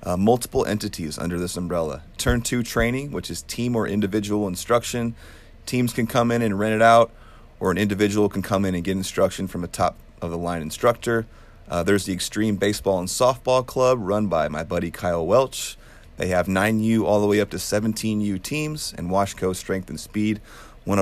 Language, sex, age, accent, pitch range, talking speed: English, male, 30-49, American, 90-115 Hz, 205 wpm